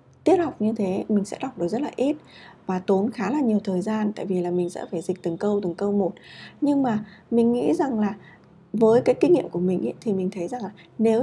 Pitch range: 185-240 Hz